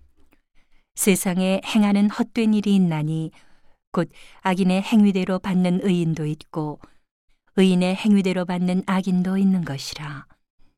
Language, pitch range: Korean, 155-195 Hz